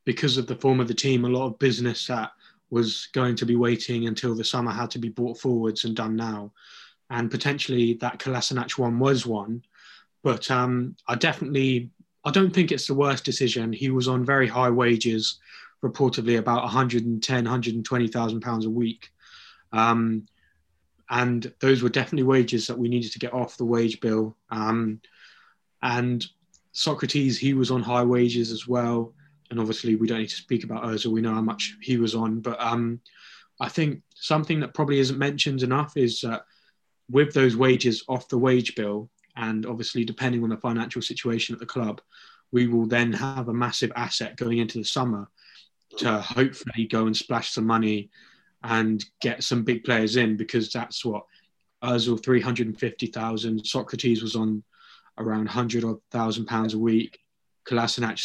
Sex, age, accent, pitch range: male, 20-39, British, 115-130 Hz